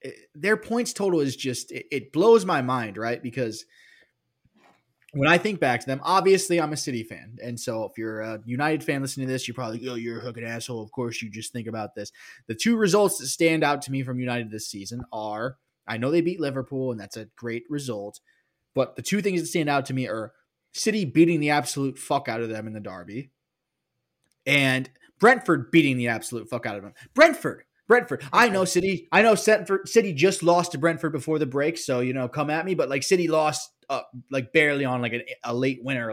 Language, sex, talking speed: English, male, 225 wpm